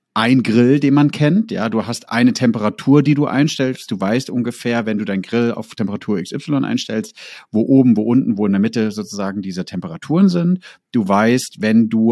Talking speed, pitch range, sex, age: 200 wpm, 100-130 Hz, male, 40-59